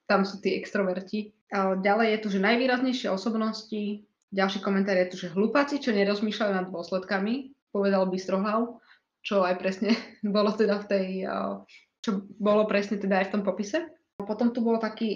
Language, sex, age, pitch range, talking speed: Slovak, female, 20-39, 195-235 Hz, 170 wpm